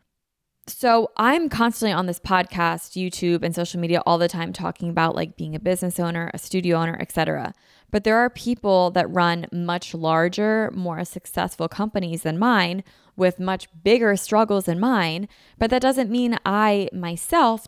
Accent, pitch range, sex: American, 175-235 Hz, female